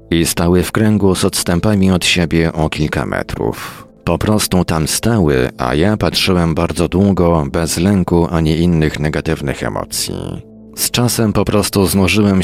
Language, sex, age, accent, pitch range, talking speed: Polish, male, 40-59, native, 85-100 Hz, 150 wpm